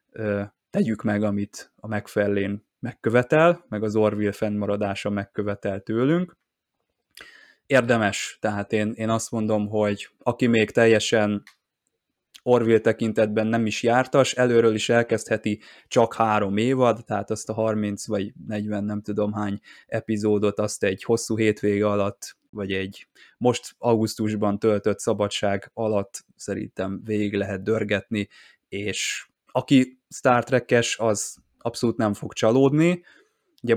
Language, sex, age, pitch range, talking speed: Hungarian, male, 20-39, 105-120 Hz, 125 wpm